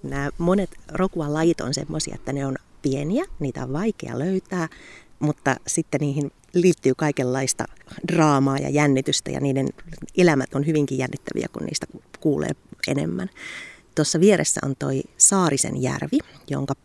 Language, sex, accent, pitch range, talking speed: Finnish, female, native, 135-175 Hz, 135 wpm